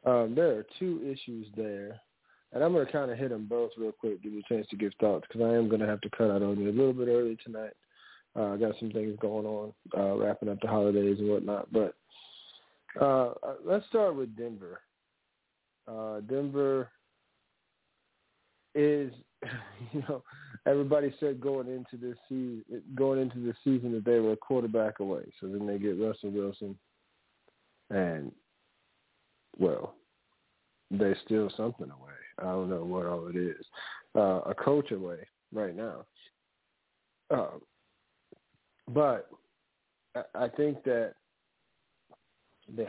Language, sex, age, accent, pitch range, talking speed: English, male, 40-59, American, 105-135 Hz, 155 wpm